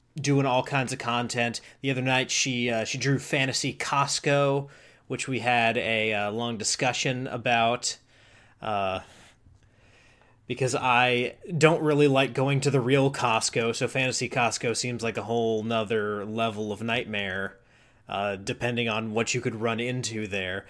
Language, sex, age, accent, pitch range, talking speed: English, male, 30-49, American, 115-140 Hz, 155 wpm